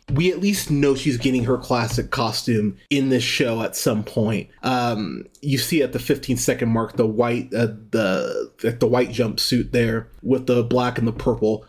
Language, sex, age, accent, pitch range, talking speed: English, male, 30-49, American, 115-140 Hz, 190 wpm